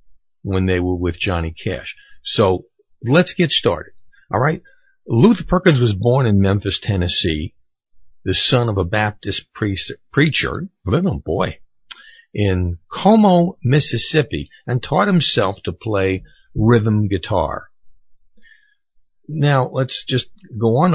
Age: 60-79